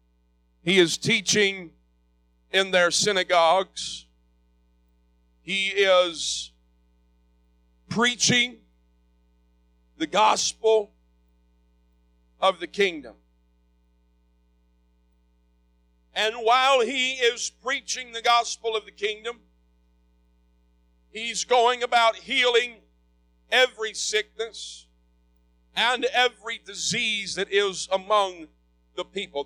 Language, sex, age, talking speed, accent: English, male, 50-69, 75 wpm, American